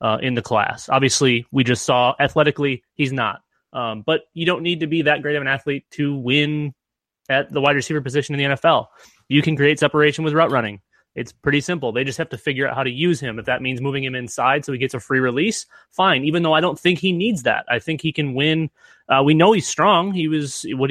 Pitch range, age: 130-155 Hz, 20-39